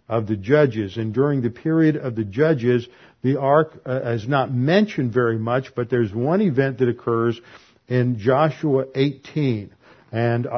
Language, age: English, 50-69